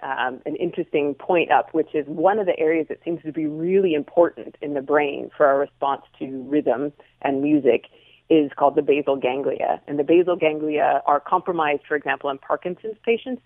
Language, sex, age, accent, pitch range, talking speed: English, female, 30-49, American, 140-180 Hz, 190 wpm